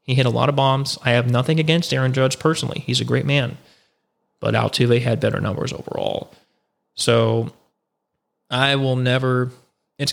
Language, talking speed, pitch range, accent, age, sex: English, 165 wpm, 125-170 Hz, American, 20-39, male